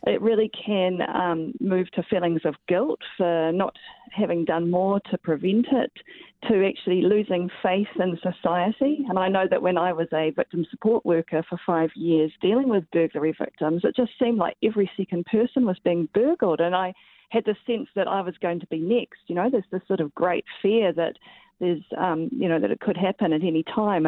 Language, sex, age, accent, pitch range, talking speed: English, female, 40-59, Australian, 175-215 Hz, 205 wpm